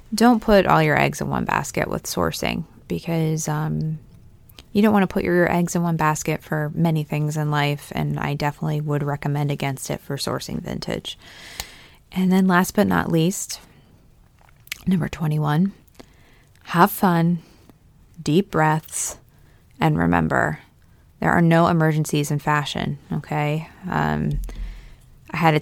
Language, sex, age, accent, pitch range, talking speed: English, female, 20-39, American, 145-175 Hz, 145 wpm